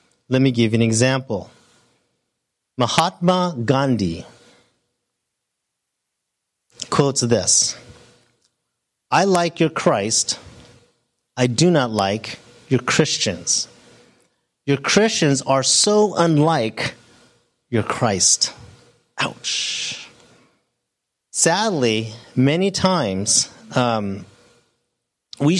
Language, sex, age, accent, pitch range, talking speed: English, male, 30-49, American, 115-150 Hz, 75 wpm